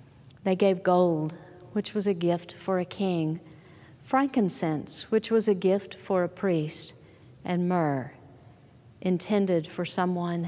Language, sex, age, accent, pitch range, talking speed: English, female, 50-69, American, 175-265 Hz, 130 wpm